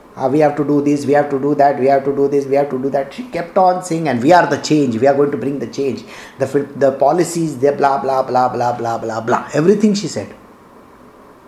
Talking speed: 265 wpm